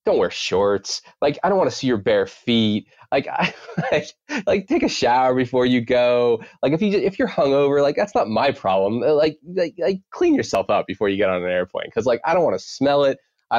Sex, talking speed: male, 240 wpm